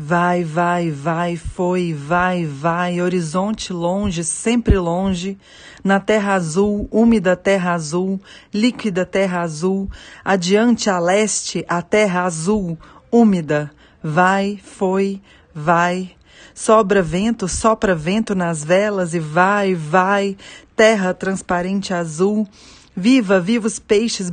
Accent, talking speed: Brazilian, 110 wpm